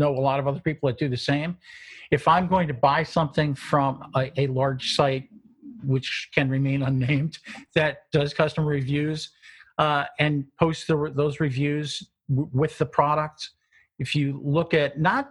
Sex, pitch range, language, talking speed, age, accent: male, 135-180 Hz, English, 165 wpm, 50-69, American